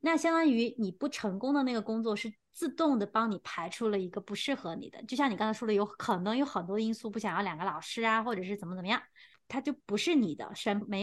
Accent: native